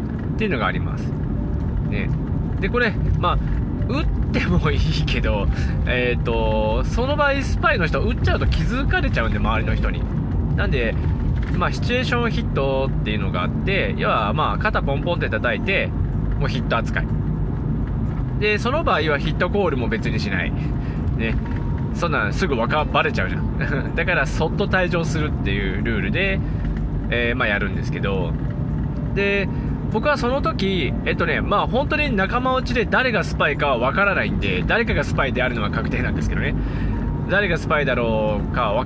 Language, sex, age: Japanese, male, 20-39